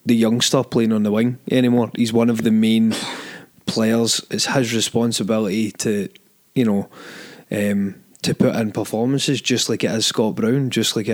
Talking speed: 175 wpm